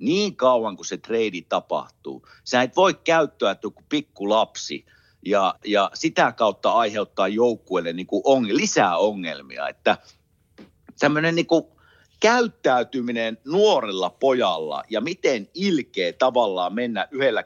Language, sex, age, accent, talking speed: Finnish, male, 50-69, native, 120 wpm